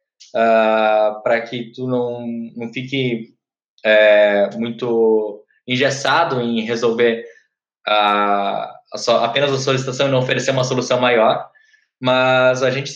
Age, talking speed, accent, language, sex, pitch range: 20-39, 130 wpm, Brazilian, Portuguese, male, 115-145 Hz